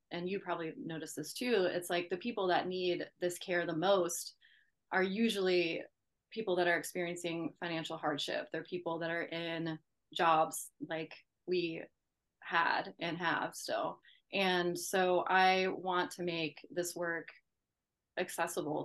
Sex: female